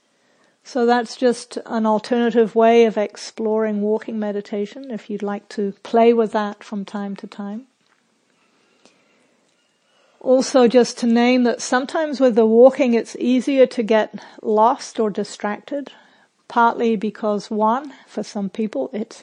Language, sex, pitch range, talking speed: English, female, 210-245 Hz, 135 wpm